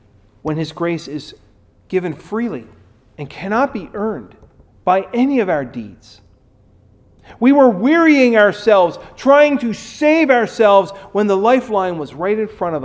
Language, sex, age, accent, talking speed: English, male, 40-59, American, 145 wpm